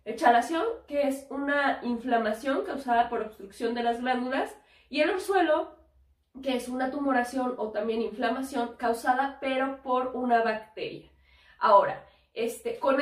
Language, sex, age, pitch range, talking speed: Spanish, female, 20-39, 230-290 Hz, 135 wpm